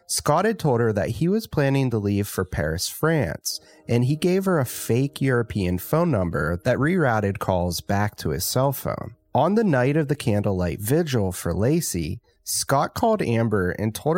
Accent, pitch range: American, 100-145 Hz